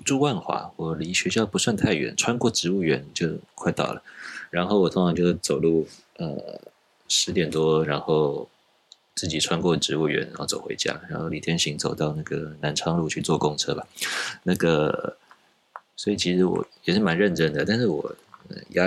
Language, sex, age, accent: Chinese, male, 20-39, native